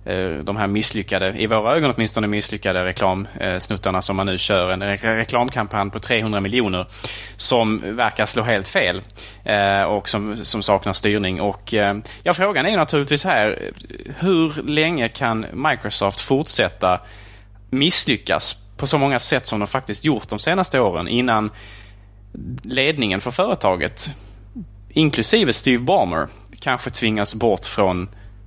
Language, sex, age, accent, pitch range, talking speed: Swedish, male, 30-49, Norwegian, 100-125 Hz, 135 wpm